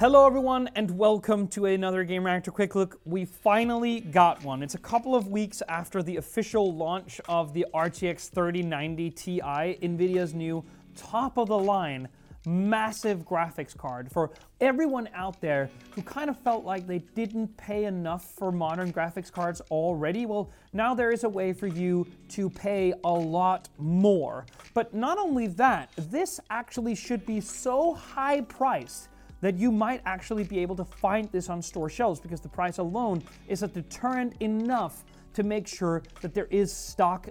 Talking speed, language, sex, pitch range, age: 160 wpm, English, male, 170-225 Hz, 30-49